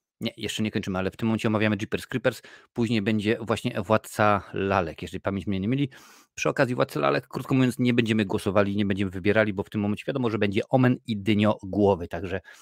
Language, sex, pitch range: Polish, male, 100-115 Hz